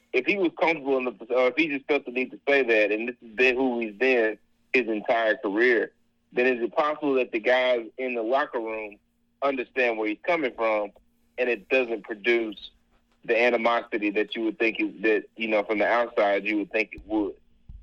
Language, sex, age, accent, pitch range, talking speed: English, male, 30-49, American, 105-125 Hz, 205 wpm